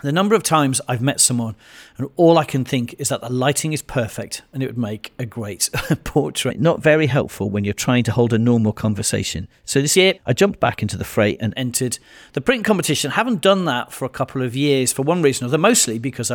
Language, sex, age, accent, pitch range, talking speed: English, male, 40-59, British, 120-155 Hz, 240 wpm